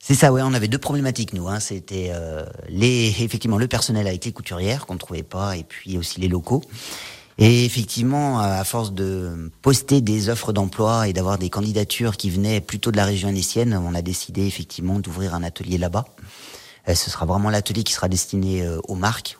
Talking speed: 200 wpm